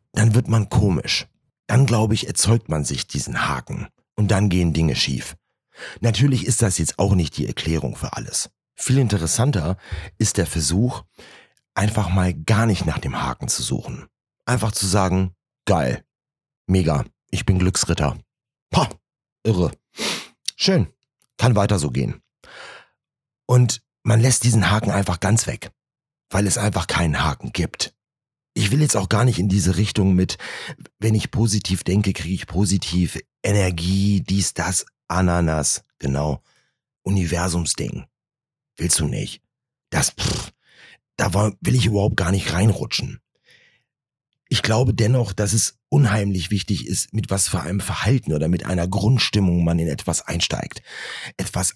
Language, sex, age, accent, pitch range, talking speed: German, male, 40-59, German, 90-120 Hz, 145 wpm